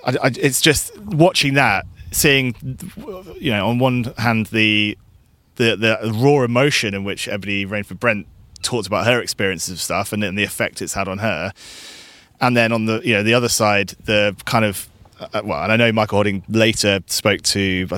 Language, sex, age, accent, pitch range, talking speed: English, male, 20-39, British, 100-120 Hz, 195 wpm